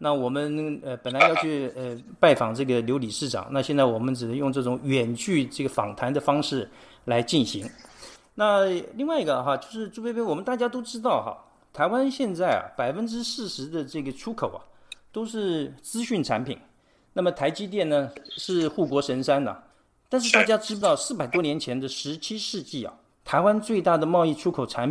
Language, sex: Chinese, male